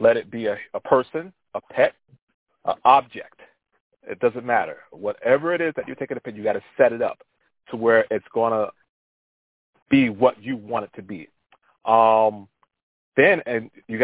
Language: English